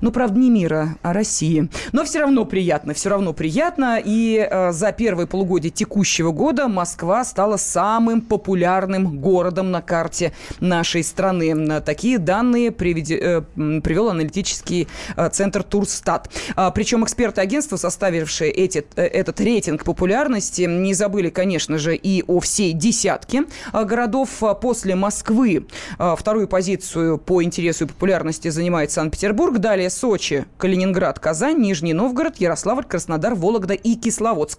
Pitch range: 170-225 Hz